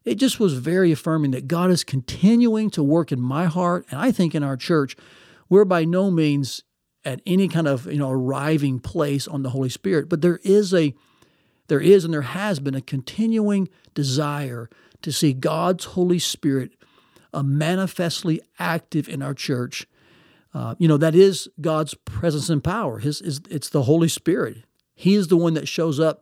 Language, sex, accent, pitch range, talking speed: English, male, American, 135-170 Hz, 185 wpm